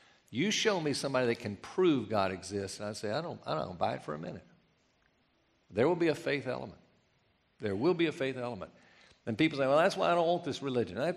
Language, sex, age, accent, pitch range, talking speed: English, male, 50-69, American, 115-155 Hz, 245 wpm